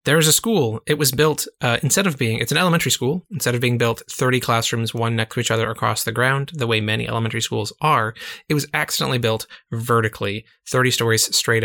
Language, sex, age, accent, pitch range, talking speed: English, male, 20-39, American, 115-160 Hz, 220 wpm